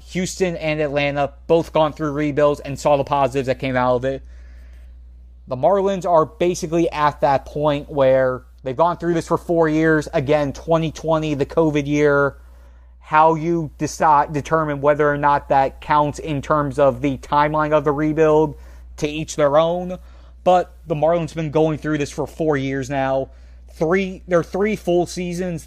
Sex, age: male, 30-49